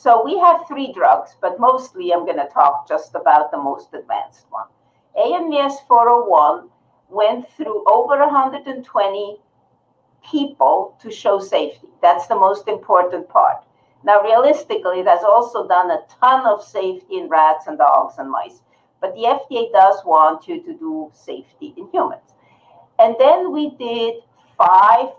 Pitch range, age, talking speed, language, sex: 200-300 Hz, 50-69, 150 wpm, English, female